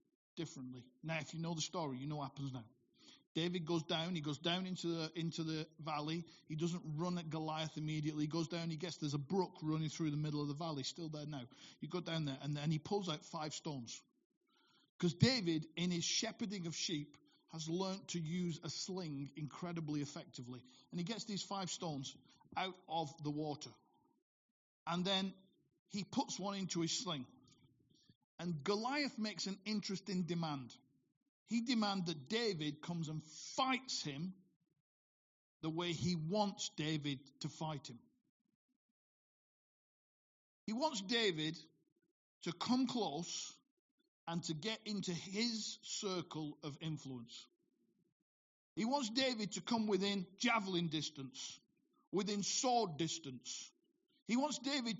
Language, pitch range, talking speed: English, 155-205 Hz, 155 wpm